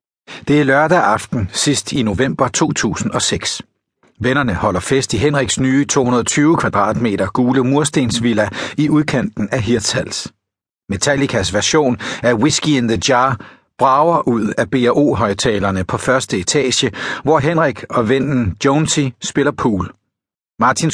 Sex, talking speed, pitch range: male, 125 wpm, 115-150 Hz